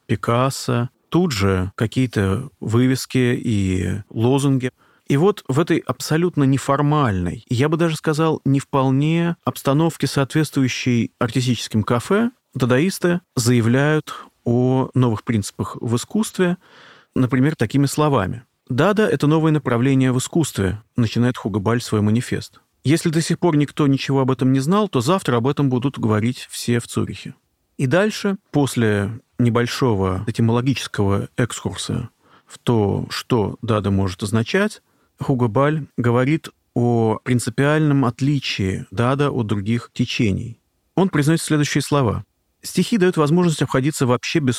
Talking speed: 125 wpm